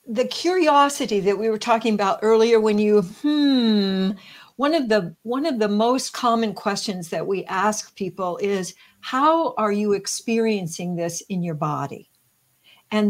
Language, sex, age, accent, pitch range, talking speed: English, female, 60-79, American, 195-235 Hz, 155 wpm